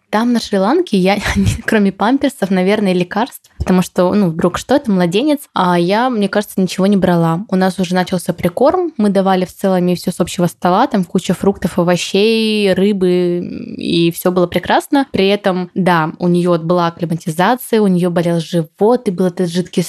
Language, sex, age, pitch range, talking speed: Russian, female, 20-39, 180-205 Hz, 180 wpm